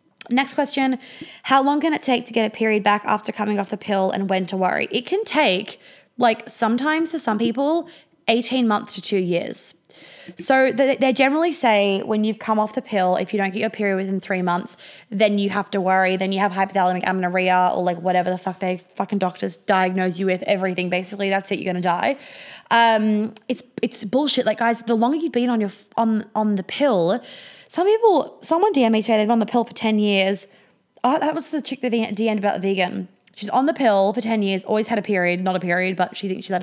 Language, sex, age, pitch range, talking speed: English, female, 20-39, 190-240 Hz, 230 wpm